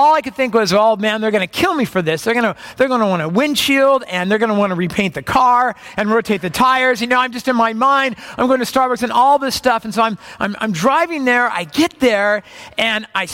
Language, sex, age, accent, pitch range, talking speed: English, male, 50-69, American, 190-245 Hz, 285 wpm